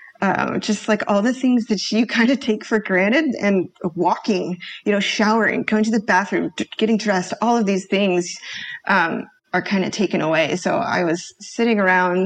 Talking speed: 190 wpm